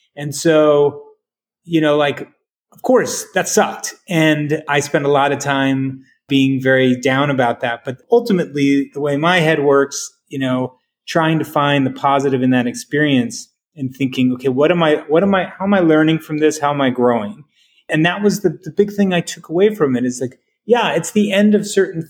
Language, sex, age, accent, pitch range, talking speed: English, male, 30-49, American, 130-165 Hz, 210 wpm